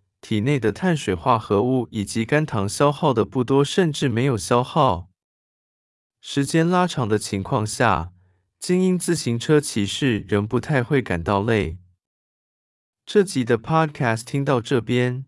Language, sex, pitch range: Chinese, male, 100-145 Hz